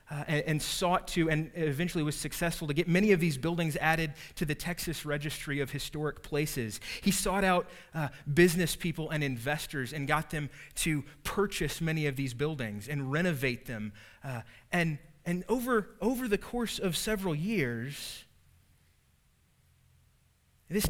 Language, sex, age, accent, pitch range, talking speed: English, male, 30-49, American, 125-170 Hz, 155 wpm